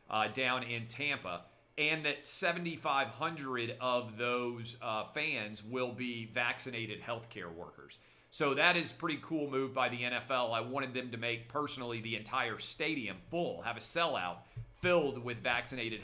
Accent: American